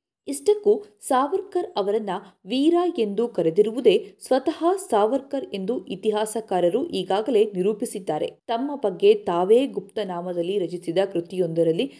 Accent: native